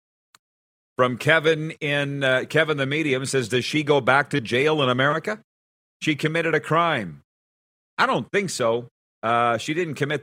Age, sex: 40-59, male